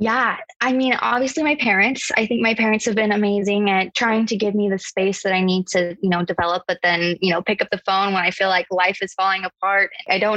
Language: English